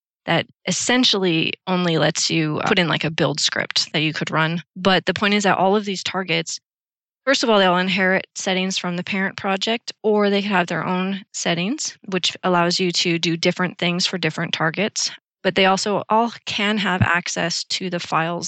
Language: English